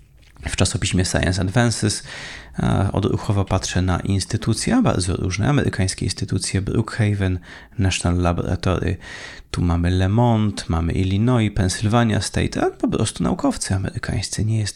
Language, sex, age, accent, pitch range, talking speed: Polish, male, 30-49, native, 95-120 Hz, 120 wpm